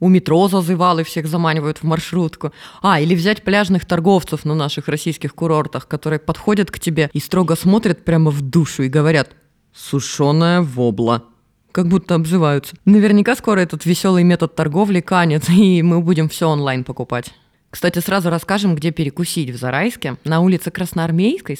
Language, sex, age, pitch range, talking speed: Russian, female, 20-39, 155-200 Hz, 160 wpm